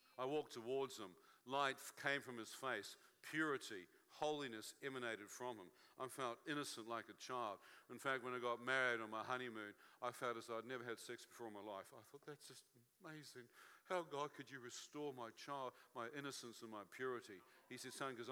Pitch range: 115-135 Hz